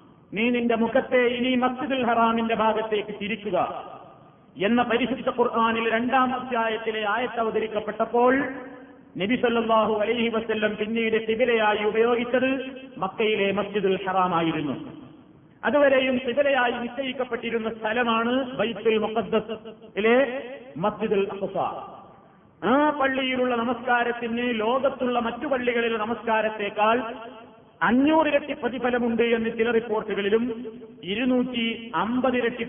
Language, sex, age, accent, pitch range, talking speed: Malayalam, male, 40-59, native, 210-245 Hz, 80 wpm